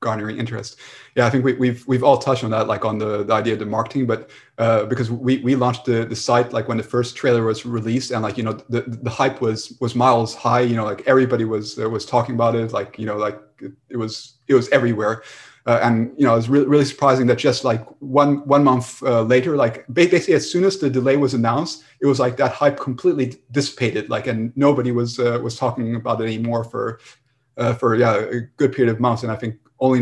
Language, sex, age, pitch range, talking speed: English, male, 30-49, 115-130 Hz, 245 wpm